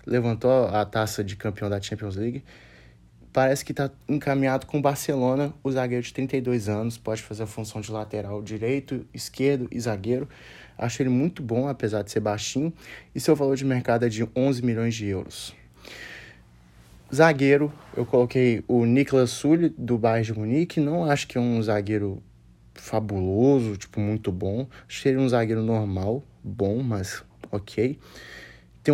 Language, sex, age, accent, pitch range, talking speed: Portuguese, male, 20-39, Brazilian, 105-135 Hz, 160 wpm